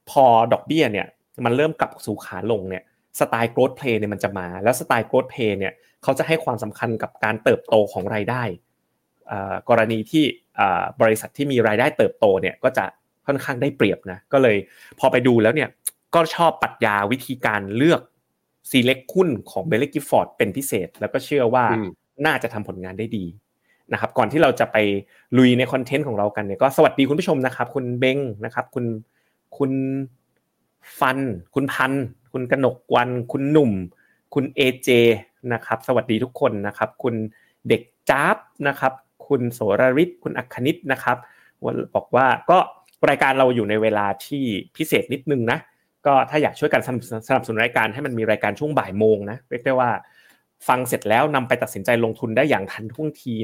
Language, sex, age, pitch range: Thai, male, 30-49, 110-140 Hz